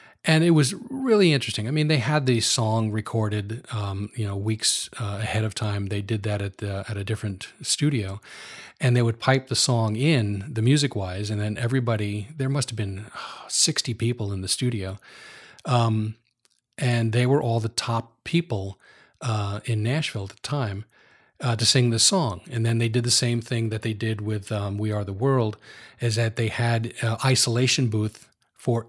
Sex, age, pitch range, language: male, 40-59, 105-125 Hz, English